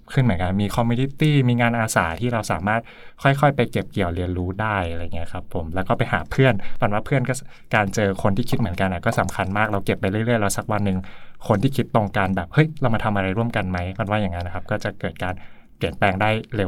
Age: 20-39